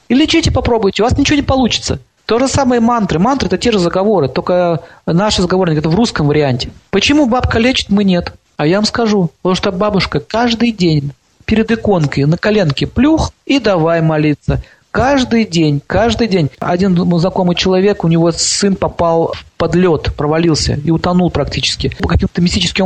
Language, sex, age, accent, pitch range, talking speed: Russian, male, 40-59, native, 150-195 Hz, 175 wpm